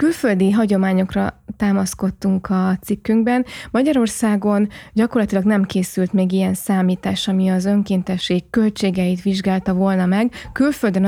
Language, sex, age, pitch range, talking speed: Hungarian, female, 20-39, 190-220 Hz, 110 wpm